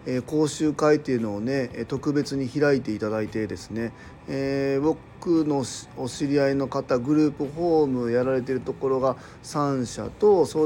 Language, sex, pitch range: Japanese, male, 125-155 Hz